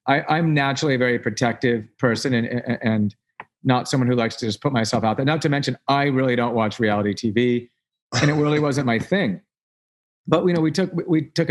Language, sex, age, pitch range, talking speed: English, male, 40-59, 115-140 Hz, 210 wpm